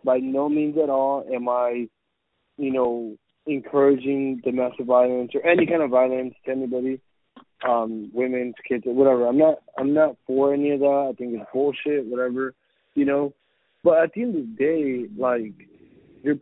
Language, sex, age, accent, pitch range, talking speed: English, male, 20-39, American, 130-165 Hz, 170 wpm